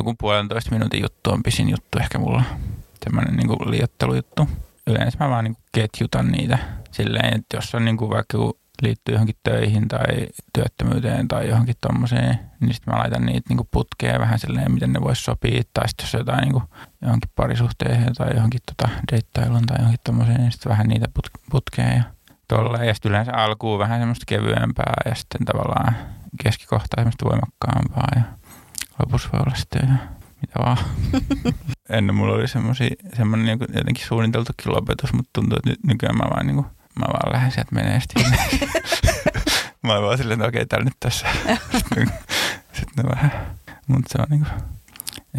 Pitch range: 110-125 Hz